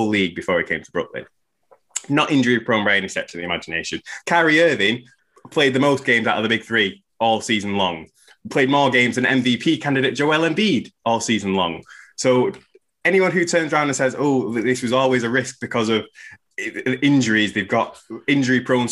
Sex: male